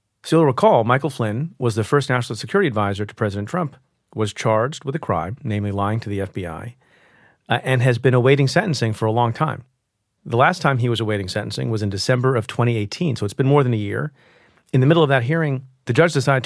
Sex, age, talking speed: male, 40-59, 225 wpm